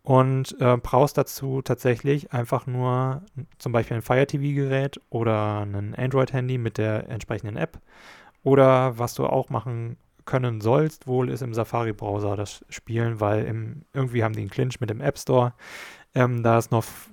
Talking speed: 150 wpm